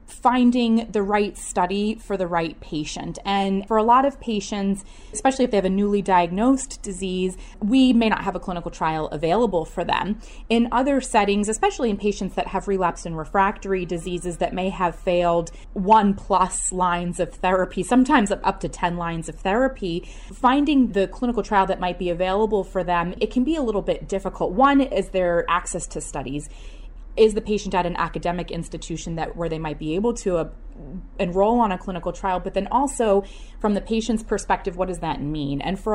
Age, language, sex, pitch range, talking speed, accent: 20-39, English, female, 175-220 Hz, 195 wpm, American